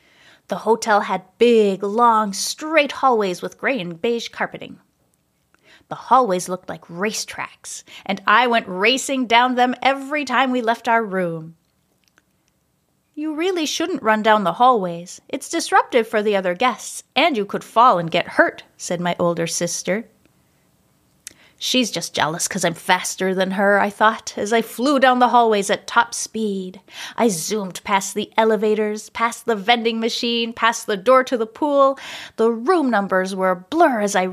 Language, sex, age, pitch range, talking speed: English, female, 30-49, 195-255 Hz, 170 wpm